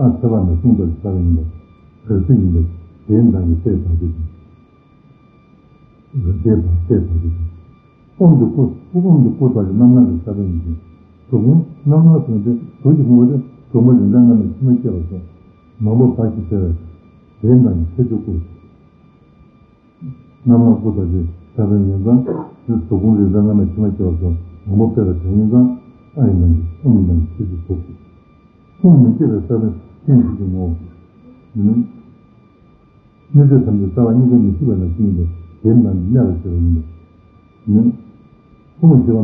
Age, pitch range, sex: 60-79, 85-120 Hz, male